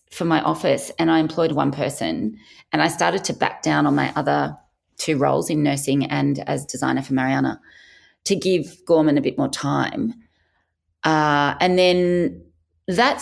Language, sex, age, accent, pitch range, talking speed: English, female, 30-49, Australian, 145-240 Hz, 170 wpm